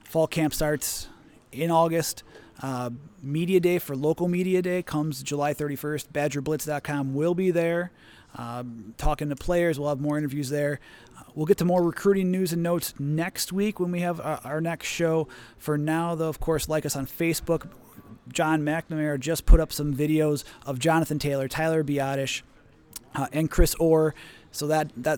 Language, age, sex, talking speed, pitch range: English, 30-49, male, 175 wpm, 145-165 Hz